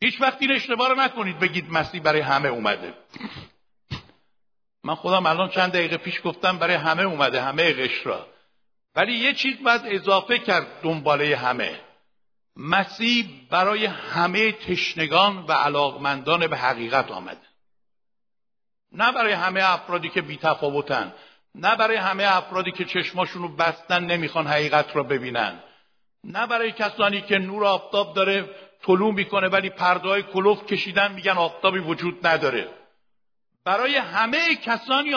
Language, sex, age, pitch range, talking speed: Persian, male, 60-79, 180-240 Hz, 130 wpm